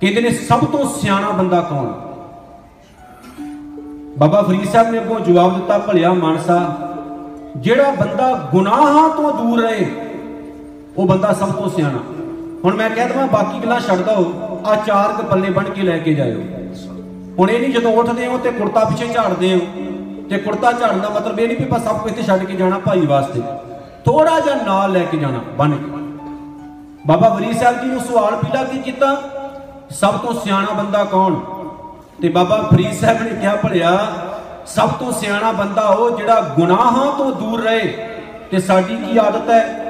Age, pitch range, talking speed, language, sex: 50-69, 175-235 Hz, 165 wpm, Punjabi, male